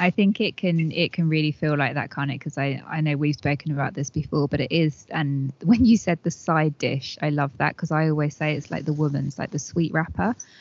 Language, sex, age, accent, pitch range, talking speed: English, female, 20-39, British, 145-170 Hz, 260 wpm